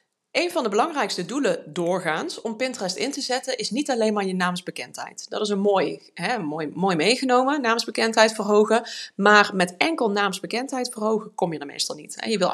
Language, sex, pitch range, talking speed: Dutch, female, 180-240 Hz, 185 wpm